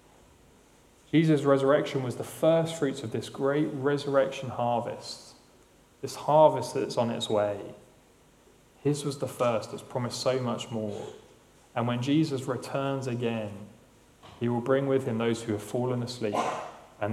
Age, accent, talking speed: 30-49, British, 145 wpm